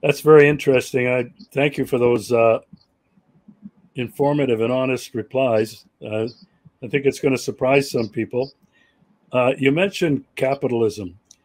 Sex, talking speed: male, 135 wpm